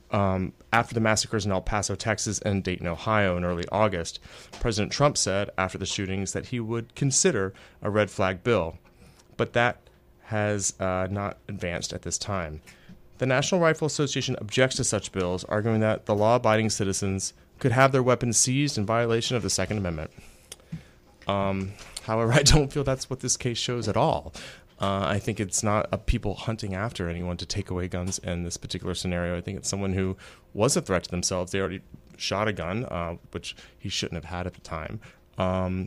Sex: male